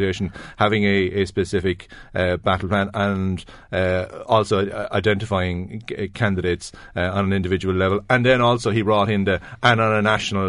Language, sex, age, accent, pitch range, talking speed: English, male, 40-59, Irish, 95-120 Hz, 160 wpm